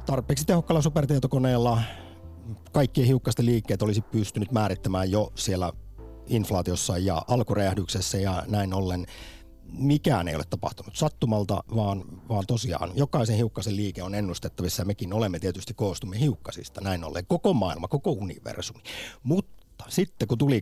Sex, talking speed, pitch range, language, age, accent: male, 135 wpm, 90-120 Hz, Finnish, 50-69, native